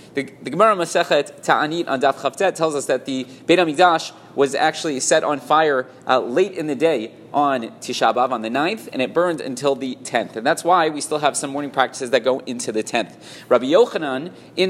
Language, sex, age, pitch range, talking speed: English, male, 30-49, 135-175 Hz, 215 wpm